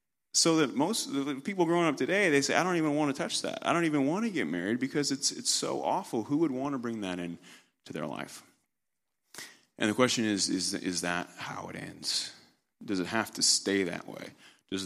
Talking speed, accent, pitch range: 235 wpm, American, 90-115 Hz